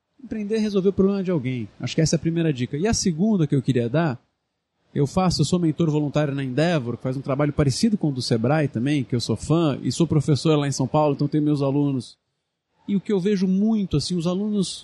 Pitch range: 150-200 Hz